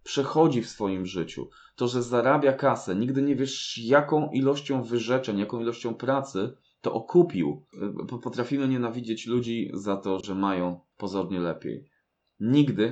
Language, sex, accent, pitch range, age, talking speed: Polish, male, native, 100-135 Hz, 20-39, 135 wpm